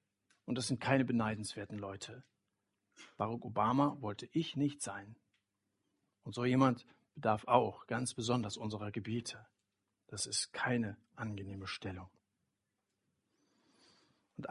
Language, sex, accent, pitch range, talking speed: German, male, German, 110-145 Hz, 110 wpm